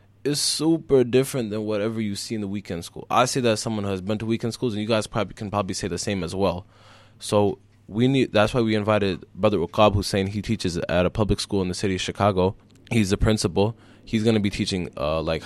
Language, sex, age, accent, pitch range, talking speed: English, male, 20-39, American, 90-110 Hz, 245 wpm